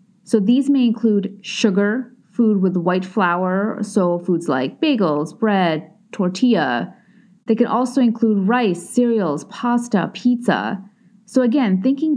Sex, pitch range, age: female, 190-225 Hz, 30-49